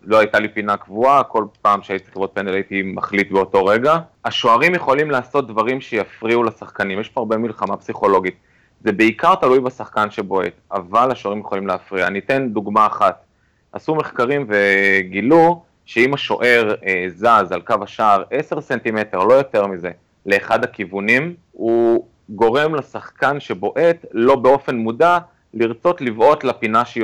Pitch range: 100-125 Hz